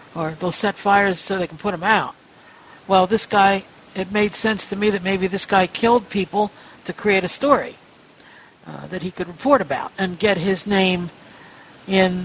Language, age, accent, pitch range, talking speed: English, 60-79, American, 175-210 Hz, 185 wpm